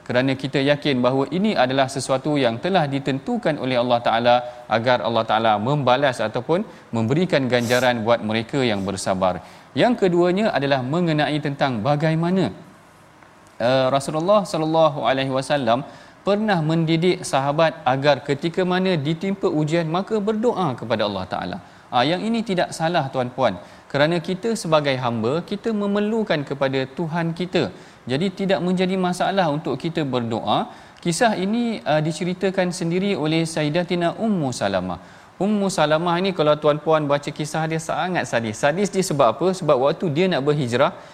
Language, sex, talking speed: Malayalam, male, 145 wpm